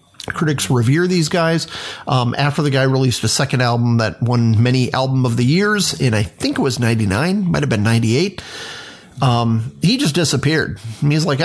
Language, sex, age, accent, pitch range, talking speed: English, male, 40-59, American, 115-145 Hz, 185 wpm